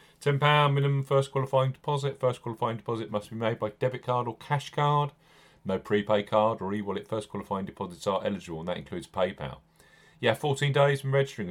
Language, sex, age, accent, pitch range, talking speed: English, male, 40-59, British, 100-135 Hz, 195 wpm